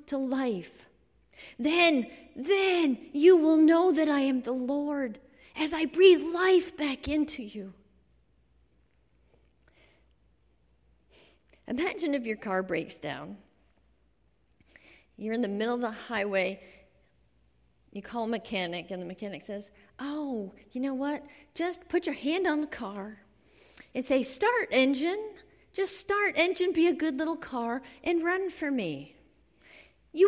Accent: American